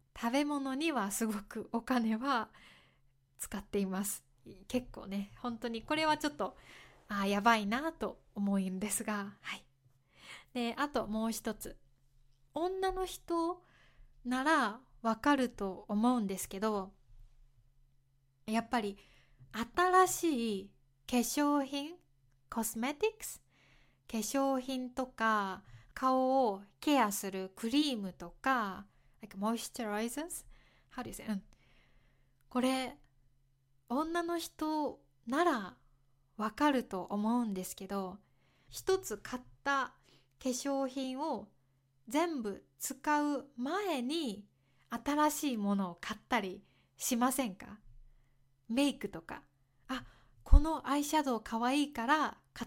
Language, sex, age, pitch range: Japanese, female, 20-39, 185-270 Hz